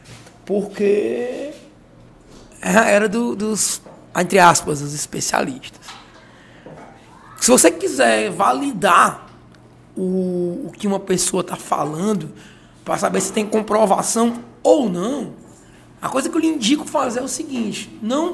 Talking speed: 120 wpm